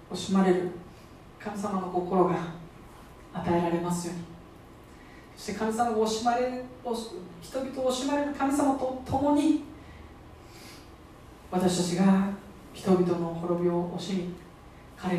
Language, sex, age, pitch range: Japanese, female, 40-59, 170-200 Hz